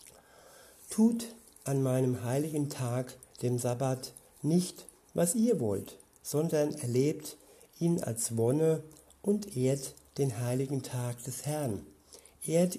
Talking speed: 115 wpm